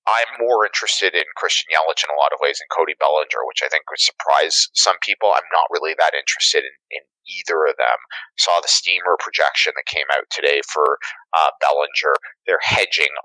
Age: 30-49